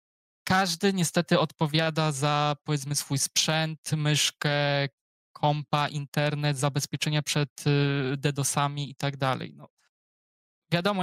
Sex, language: male, Polish